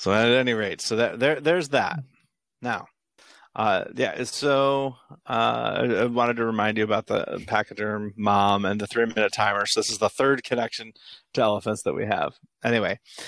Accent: American